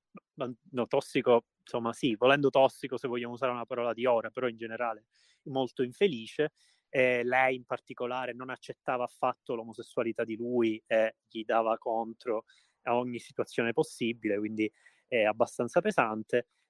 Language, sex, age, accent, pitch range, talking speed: Italian, male, 30-49, native, 115-135 Hz, 150 wpm